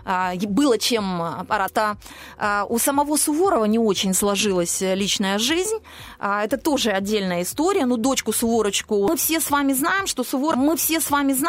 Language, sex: Russian, female